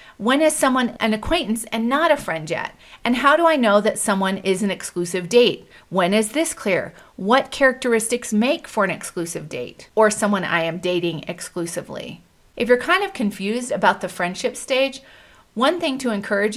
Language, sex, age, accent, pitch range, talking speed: English, female, 40-59, American, 195-250 Hz, 185 wpm